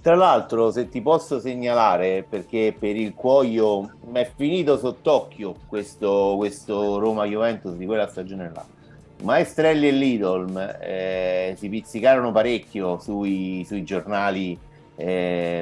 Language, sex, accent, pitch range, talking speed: Italian, male, native, 100-130 Hz, 125 wpm